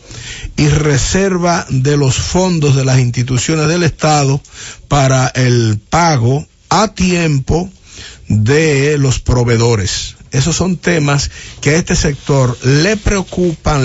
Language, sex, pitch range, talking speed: English, male, 120-165 Hz, 115 wpm